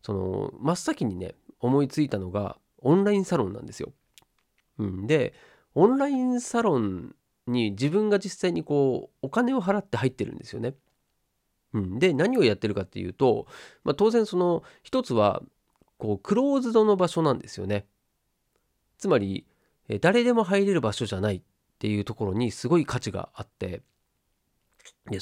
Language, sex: Japanese, male